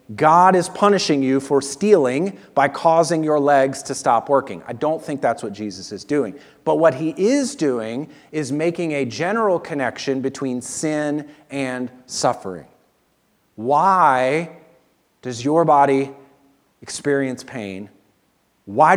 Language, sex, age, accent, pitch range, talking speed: English, male, 40-59, American, 135-170 Hz, 135 wpm